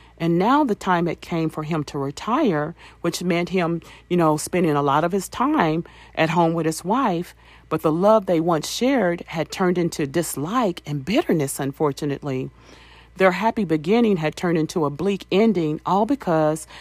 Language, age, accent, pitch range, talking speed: English, 40-59, American, 150-190 Hz, 180 wpm